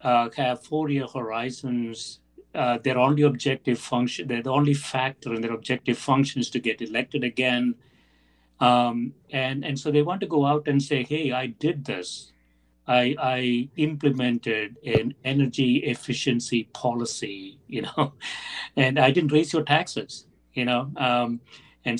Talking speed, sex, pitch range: 155 wpm, male, 120-145 Hz